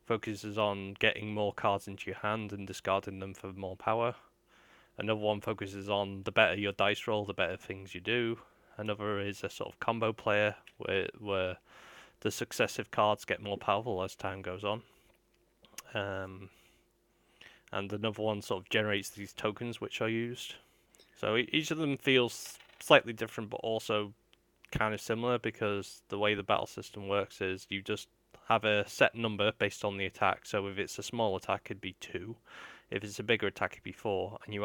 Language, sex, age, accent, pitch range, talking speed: English, male, 20-39, British, 100-110 Hz, 185 wpm